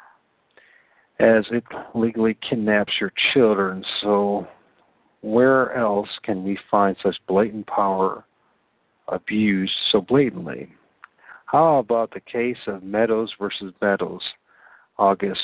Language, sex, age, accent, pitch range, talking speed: English, male, 50-69, American, 100-115 Hz, 105 wpm